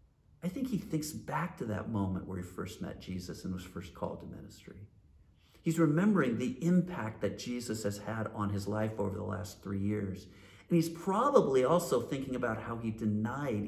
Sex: male